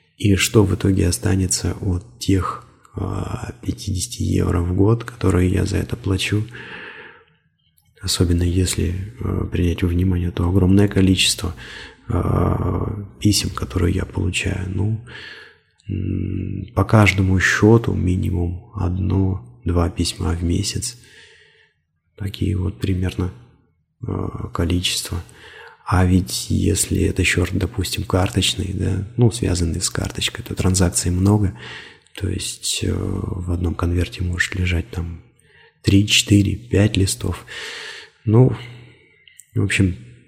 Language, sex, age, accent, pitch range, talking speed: Russian, male, 30-49, native, 90-110 Hz, 105 wpm